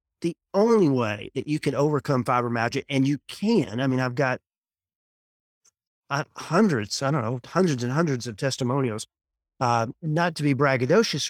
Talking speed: 145 wpm